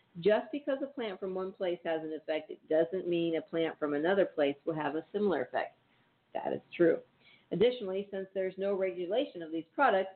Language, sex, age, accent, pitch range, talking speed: English, female, 50-69, American, 160-200 Hz, 200 wpm